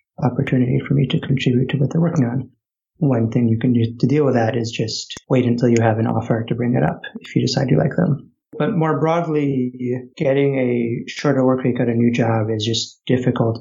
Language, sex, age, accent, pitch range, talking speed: English, male, 30-49, American, 120-140 Hz, 230 wpm